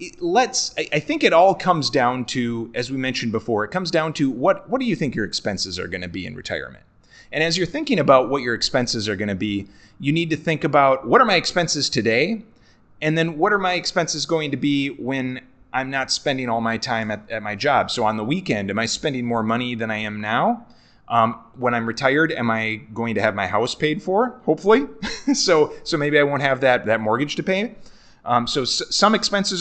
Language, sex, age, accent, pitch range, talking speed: English, male, 30-49, American, 120-170 Hz, 230 wpm